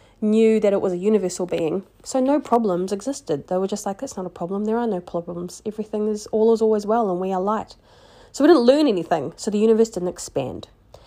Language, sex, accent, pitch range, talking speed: English, female, Australian, 180-215 Hz, 235 wpm